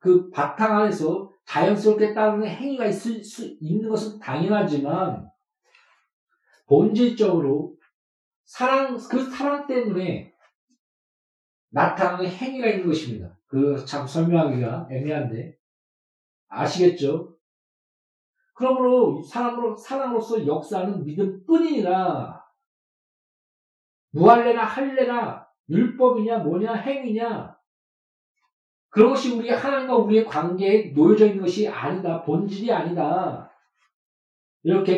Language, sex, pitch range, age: Korean, male, 175-235 Hz, 50-69